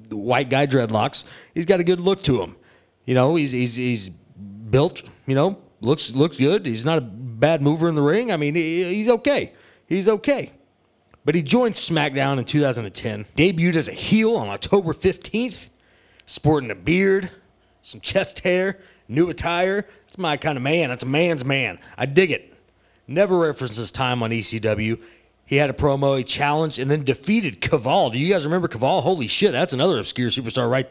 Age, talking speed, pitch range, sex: 30-49, 185 wpm, 120-165 Hz, male